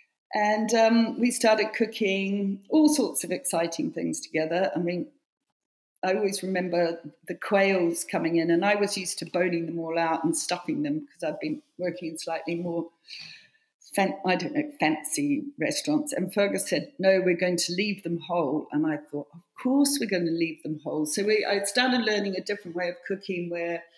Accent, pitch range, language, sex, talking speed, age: British, 170-220 Hz, English, female, 195 wpm, 40-59